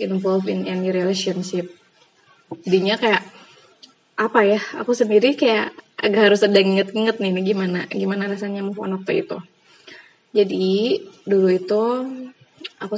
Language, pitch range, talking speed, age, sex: Indonesian, 190-220 Hz, 120 wpm, 20-39, female